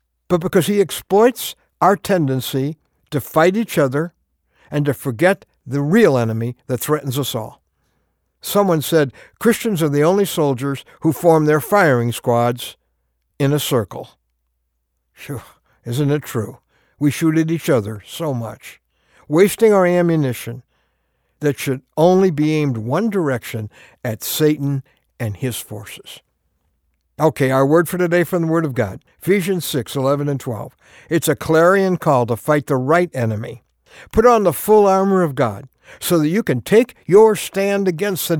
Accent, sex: American, male